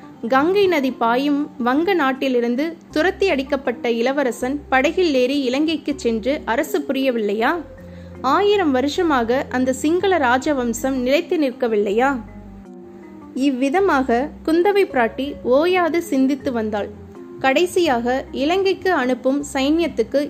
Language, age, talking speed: Tamil, 20-39, 90 wpm